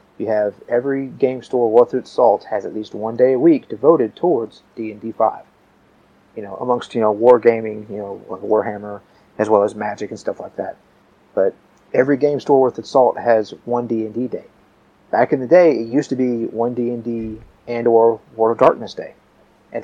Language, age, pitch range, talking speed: English, 30-49, 110-130 Hz, 200 wpm